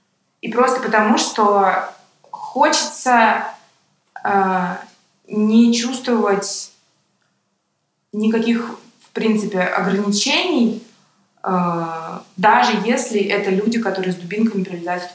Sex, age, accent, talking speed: female, 20-39, native, 85 wpm